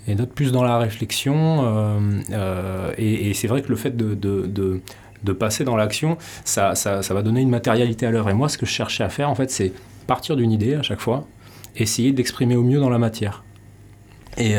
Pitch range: 95-115 Hz